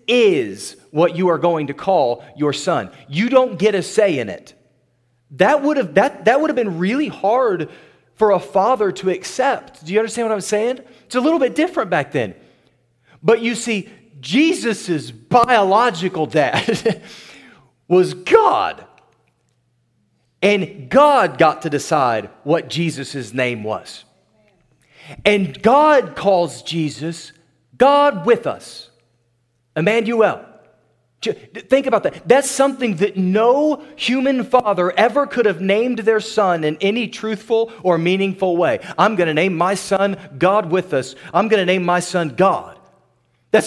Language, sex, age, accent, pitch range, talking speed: English, male, 30-49, American, 170-235 Hz, 145 wpm